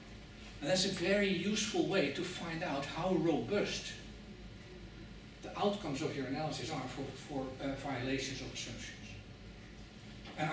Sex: male